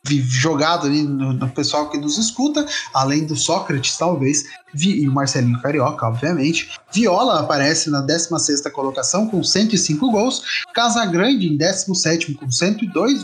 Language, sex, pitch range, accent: Portuguese, male, 145-205 Hz, Brazilian